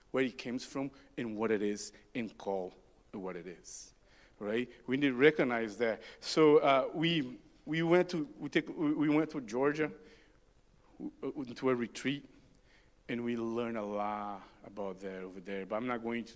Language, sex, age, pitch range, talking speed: English, male, 50-69, 110-140 Hz, 175 wpm